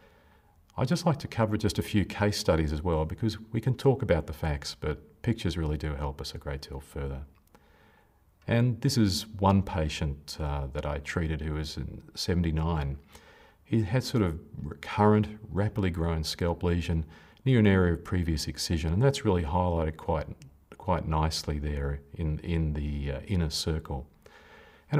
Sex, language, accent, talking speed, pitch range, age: male, English, Australian, 175 wpm, 75-100 Hz, 40-59